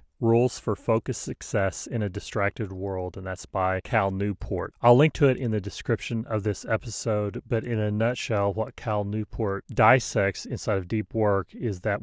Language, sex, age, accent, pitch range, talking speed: English, male, 30-49, American, 100-115 Hz, 185 wpm